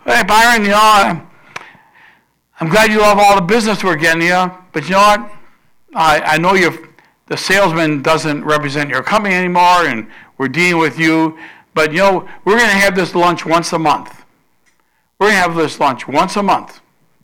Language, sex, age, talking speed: English, male, 60-79, 195 wpm